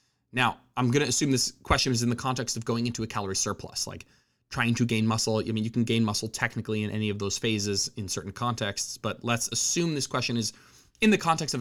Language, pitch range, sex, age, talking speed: English, 110-135 Hz, male, 20-39, 245 wpm